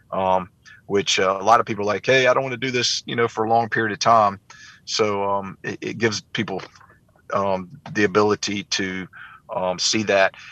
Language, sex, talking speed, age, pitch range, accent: English, male, 205 wpm, 30-49, 95-115 Hz, American